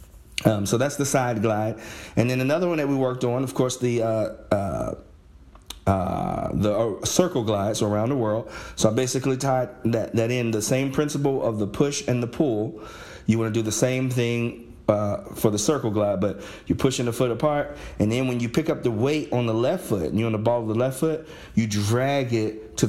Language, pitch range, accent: English, 105-130 Hz, American